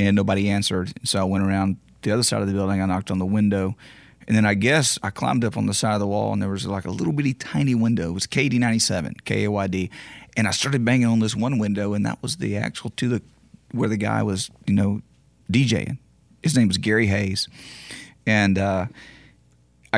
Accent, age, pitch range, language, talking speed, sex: American, 30-49, 95-110 Hz, English, 235 wpm, male